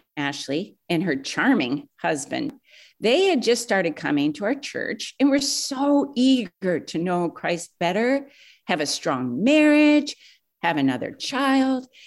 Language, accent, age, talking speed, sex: English, American, 50-69, 140 wpm, female